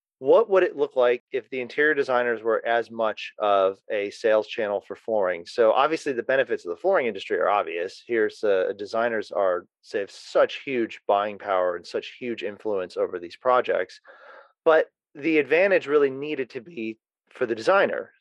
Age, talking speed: 30-49, 180 wpm